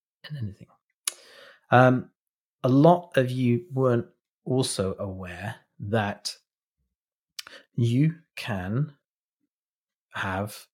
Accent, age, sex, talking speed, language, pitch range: British, 30-49, male, 80 wpm, English, 100-130 Hz